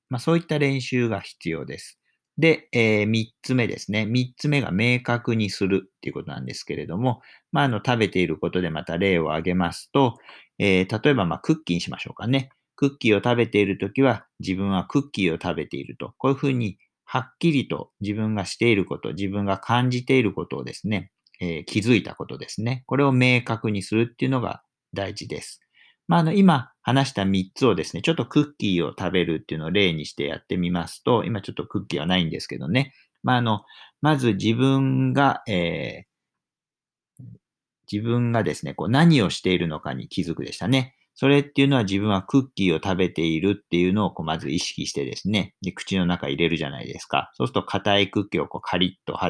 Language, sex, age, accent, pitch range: Japanese, male, 50-69, native, 95-130 Hz